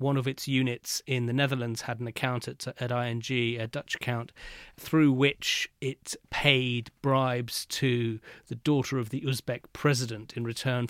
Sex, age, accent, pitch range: male, 40-59, British, 120-135 Hz